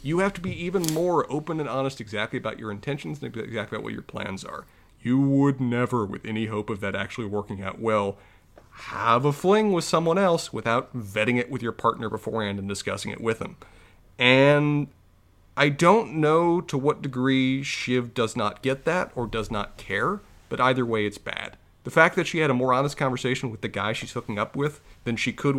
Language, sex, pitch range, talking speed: English, male, 110-170 Hz, 210 wpm